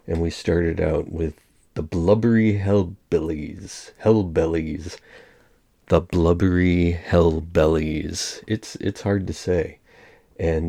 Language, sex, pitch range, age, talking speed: English, male, 80-95 Hz, 40-59, 100 wpm